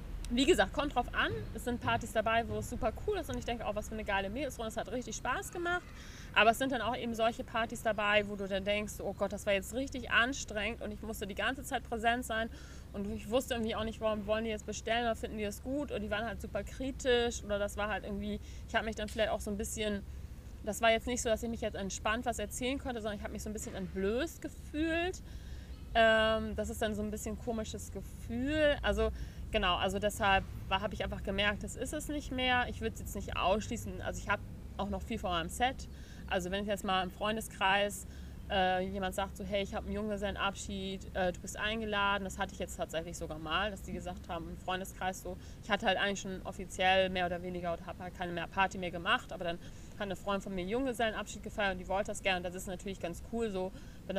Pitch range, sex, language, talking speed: 195-230 Hz, female, German, 250 wpm